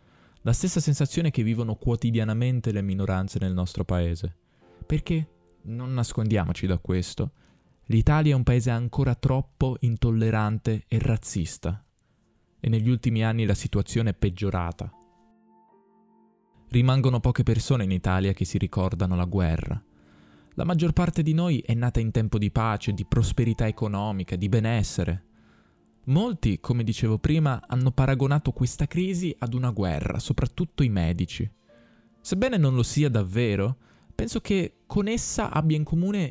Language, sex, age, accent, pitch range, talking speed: Italian, male, 20-39, native, 105-150 Hz, 140 wpm